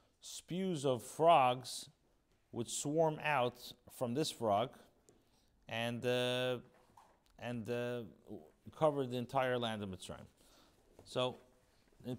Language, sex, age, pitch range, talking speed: English, male, 40-59, 110-135 Hz, 105 wpm